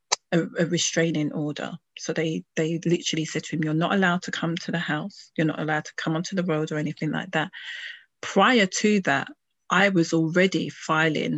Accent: British